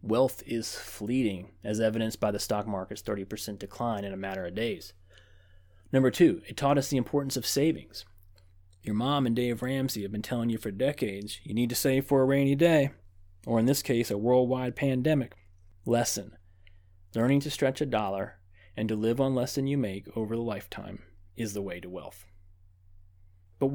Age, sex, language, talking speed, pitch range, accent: 30-49, male, English, 185 wpm, 90-130 Hz, American